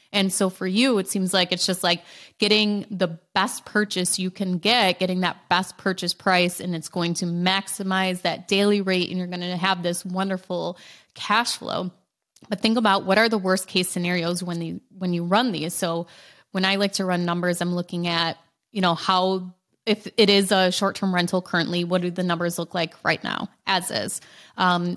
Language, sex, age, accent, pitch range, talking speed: English, female, 20-39, American, 175-195 Hz, 200 wpm